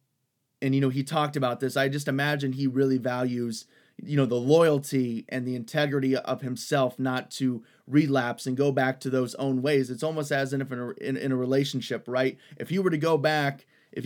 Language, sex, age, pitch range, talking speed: English, male, 30-49, 130-150 Hz, 200 wpm